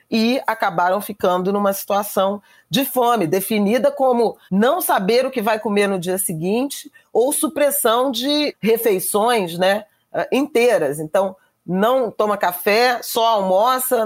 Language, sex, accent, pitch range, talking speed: Portuguese, female, Brazilian, 180-225 Hz, 130 wpm